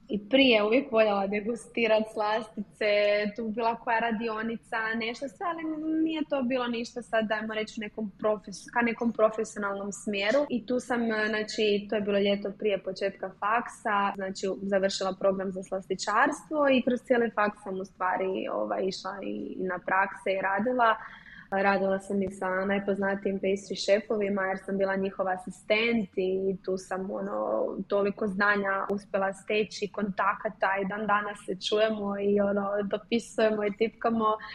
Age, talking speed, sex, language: 20-39, 155 wpm, female, Croatian